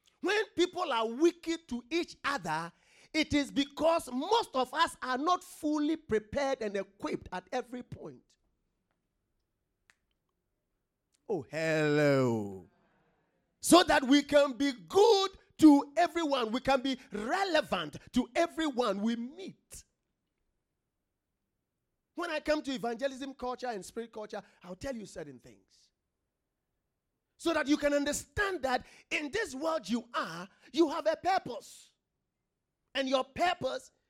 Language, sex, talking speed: English, male, 125 wpm